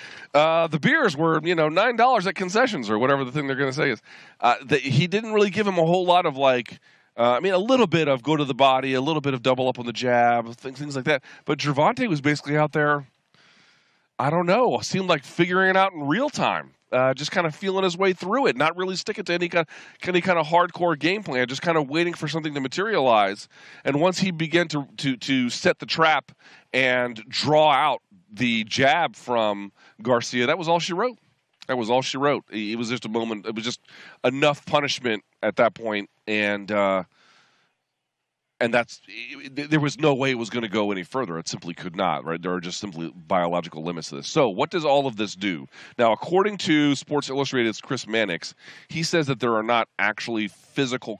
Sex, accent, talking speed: male, American, 220 wpm